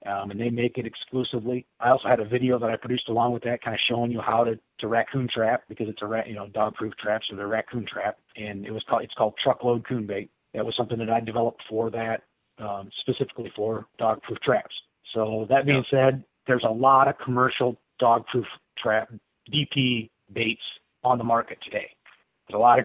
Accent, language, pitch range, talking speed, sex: American, English, 115-135 Hz, 220 wpm, male